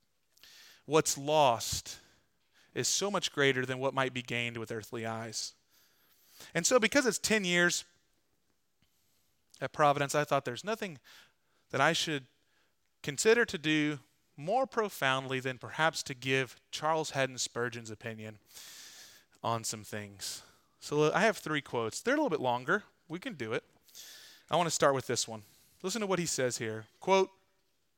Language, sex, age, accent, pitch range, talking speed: English, male, 30-49, American, 135-195 Hz, 155 wpm